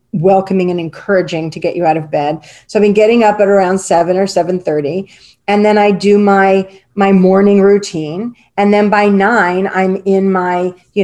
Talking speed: 190 wpm